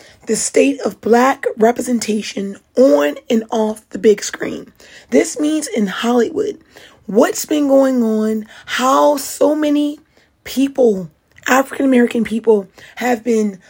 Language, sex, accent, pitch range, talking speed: English, female, American, 215-255 Hz, 120 wpm